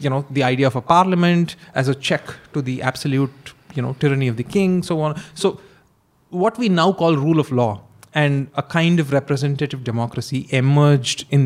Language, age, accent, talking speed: Hindi, 30-49, native, 200 wpm